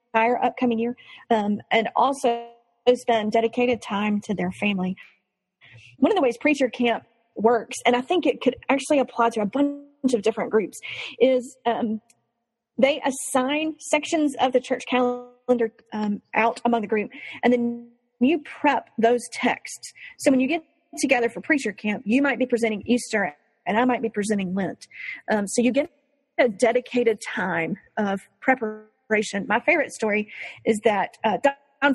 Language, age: English, 40-59